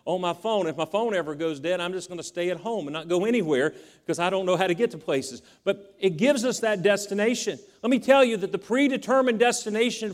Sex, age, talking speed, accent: male, 50-69, 255 wpm, American